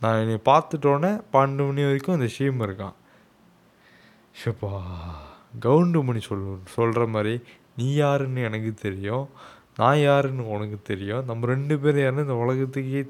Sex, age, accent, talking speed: male, 20-39, native, 130 wpm